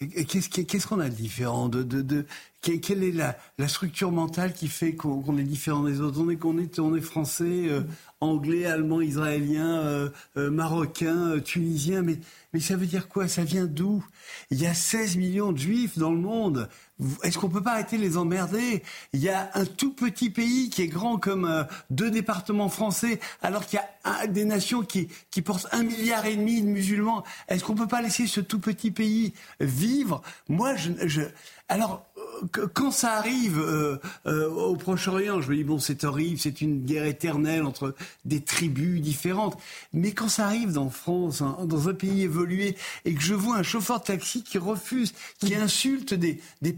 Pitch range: 160-205 Hz